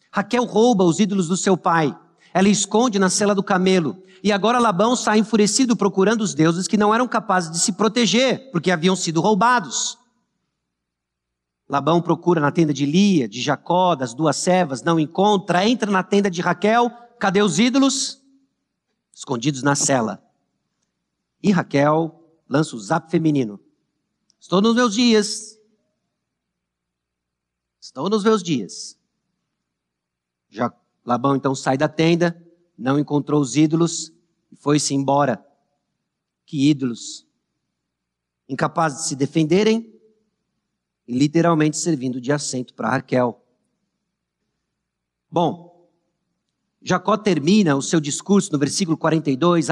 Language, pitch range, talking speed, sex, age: Portuguese, 145-210 Hz, 125 wpm, male, 50-69